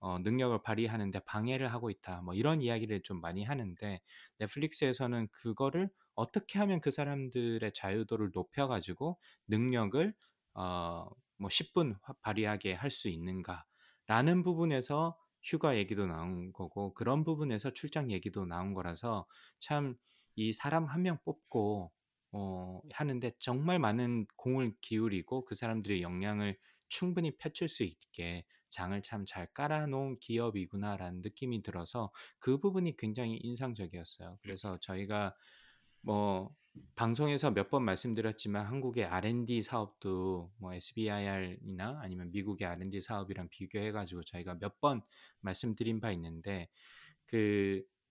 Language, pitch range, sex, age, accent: Korean, 95-135 Hz, male, 20-39, native